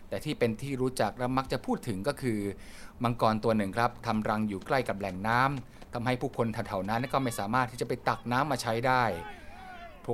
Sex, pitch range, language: male, 105-125 Hz, Thai